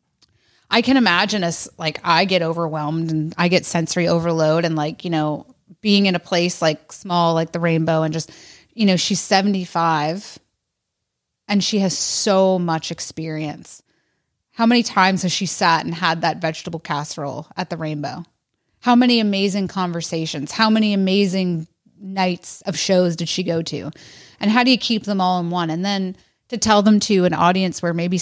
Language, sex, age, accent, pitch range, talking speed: English, female, 30-49, American, 160-195 Hz, 180 wpm